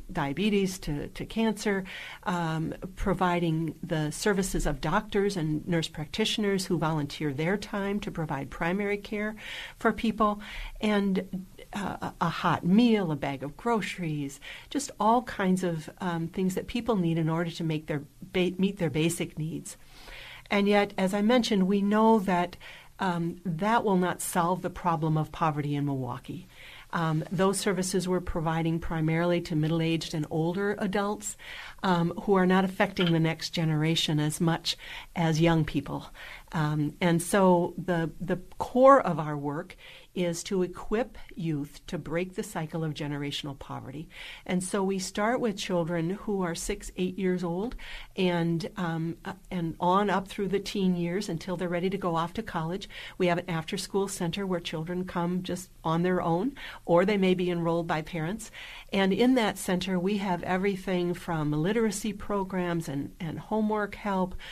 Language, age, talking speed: English, 60-79, 165 wpm